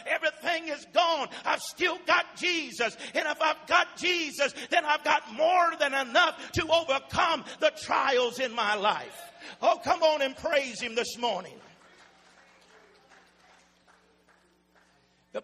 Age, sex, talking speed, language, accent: 50-69, male, 130 wpm, English, American